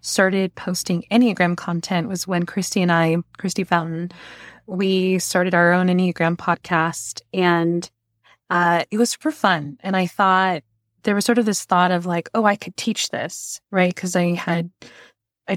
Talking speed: 170 wpm